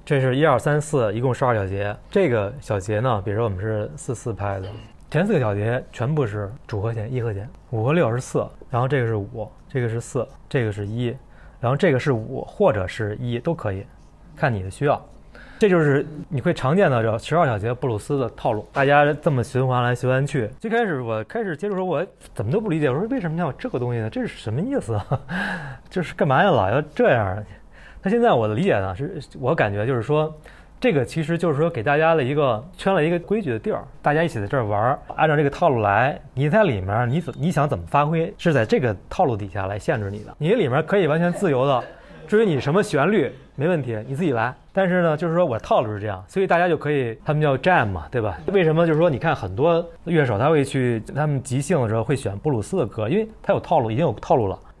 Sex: male